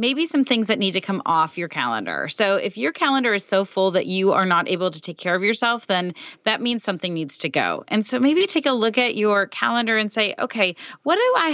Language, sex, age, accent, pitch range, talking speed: English, female, 30-49, American, 195-255 Hz, 255 wpm